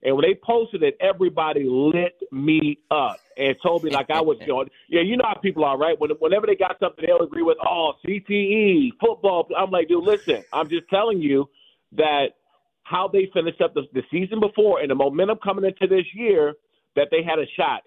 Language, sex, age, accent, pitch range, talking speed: English, male, 40-59, American, 150-215 Hz, 205 wpm